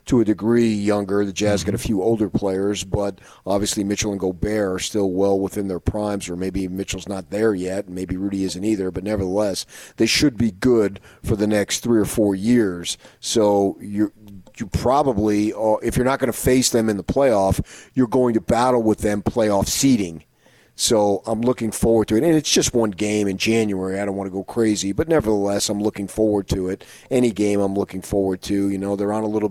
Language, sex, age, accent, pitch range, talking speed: English, male, 40-59, American, 100-115 Hz, 215 wpm